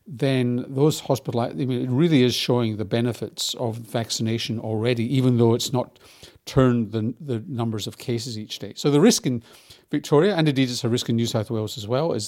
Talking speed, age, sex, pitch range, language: 210 wpm, 50-69, male, 115-135 Hz, English